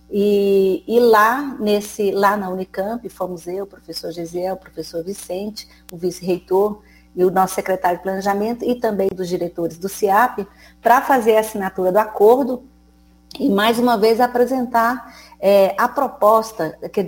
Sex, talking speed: female, 145 wpm